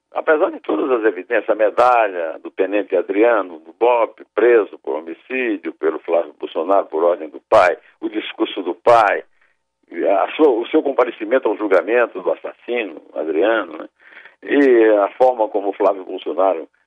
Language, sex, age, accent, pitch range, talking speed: Portuguese, male, 60-79, Brazilian, 320-455 Hz, 160 wpm